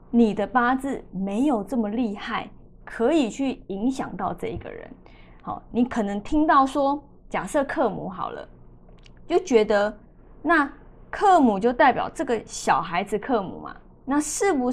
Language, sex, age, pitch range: Chinese, female, 20-39, 200-280 Hz